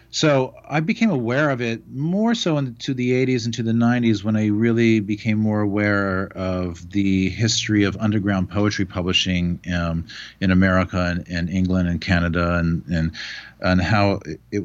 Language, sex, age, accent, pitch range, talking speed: English, male, 40-59, American, 95-120 Hz, 170 wpm